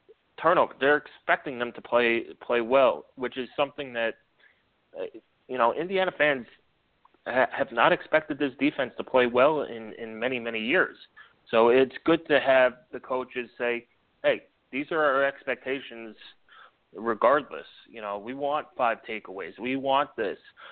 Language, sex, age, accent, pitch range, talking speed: English, male, 30-49, American, 115-135 Hz, 150 wpm